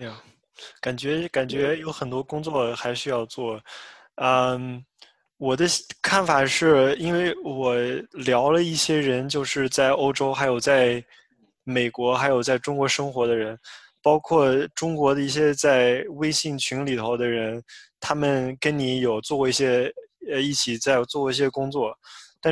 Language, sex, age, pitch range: English, male, 20-39, 125-155 Hz